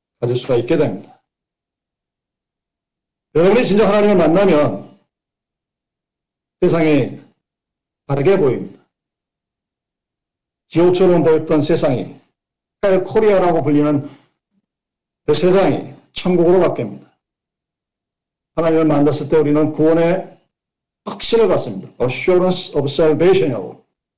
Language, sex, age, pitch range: Korean, male, 50-69, 150-185 Hz